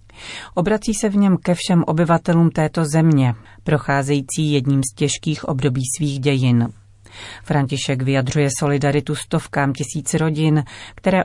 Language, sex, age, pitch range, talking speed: Czech, female, 40-59, 140-170 Hz, 125 wpm